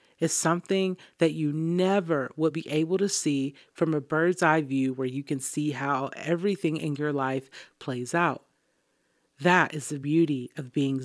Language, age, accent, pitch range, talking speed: English, 30-49, American, 140-165 Hz, 175 wpm